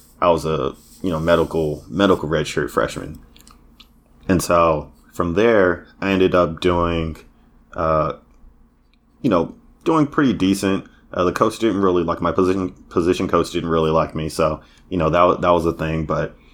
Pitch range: 80-90 Hz